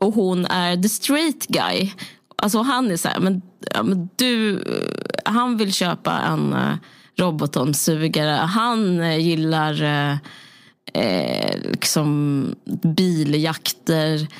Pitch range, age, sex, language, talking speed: 175-225 Hz, 20-39, female, Swedish, 105 wpm